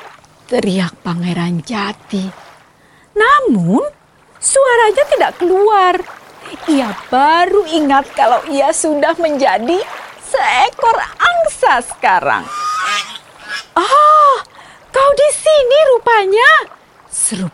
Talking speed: 80 wpm